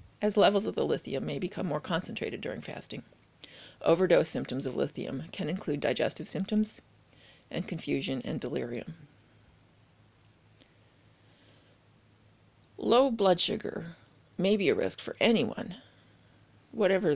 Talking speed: 115 wpm